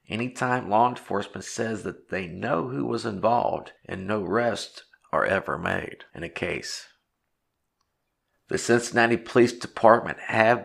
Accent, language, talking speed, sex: American, English, 140 wpm, male